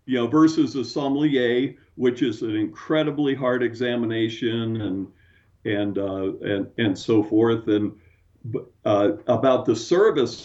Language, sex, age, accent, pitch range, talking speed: English, male, 50-69, American, 100-145 Hz, 130 wpm